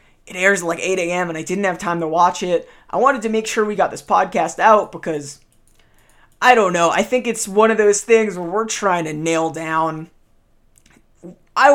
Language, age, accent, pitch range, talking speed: English, 20-39, American, 170-225 Hz, 215 wpm